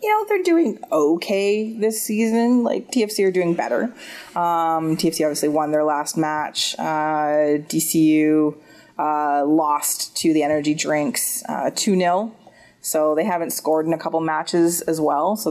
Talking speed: 155 wpm